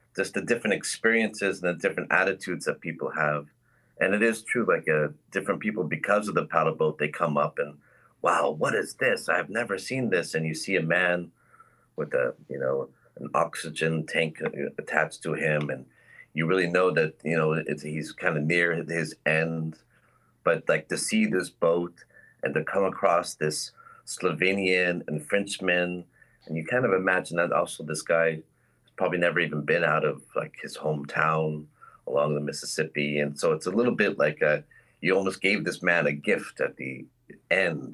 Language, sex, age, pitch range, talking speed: Dutch, male, 30-49, 80-120 Hz, 190 wpm